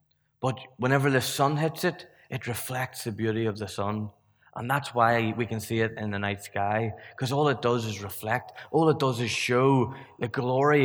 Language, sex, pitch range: English, male, 115-140 Hz